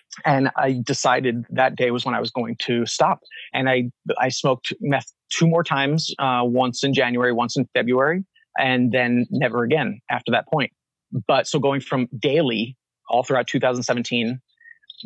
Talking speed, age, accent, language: 165 wpm, 30-49, American, English